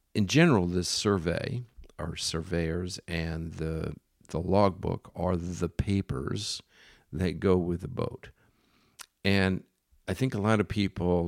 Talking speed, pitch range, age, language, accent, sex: 135 wpm, 85-105 Hz, 50-69, English, American, male